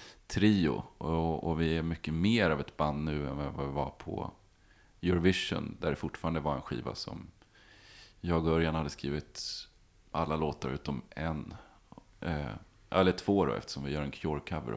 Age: 30-49